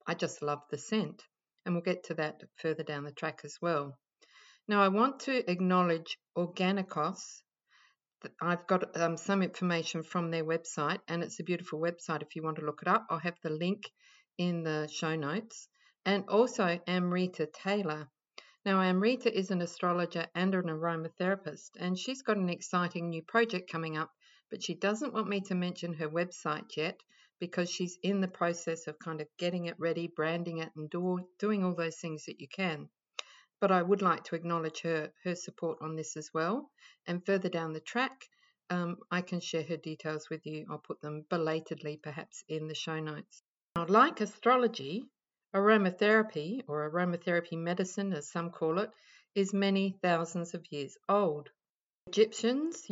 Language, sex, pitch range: English, female, 160-195 Hz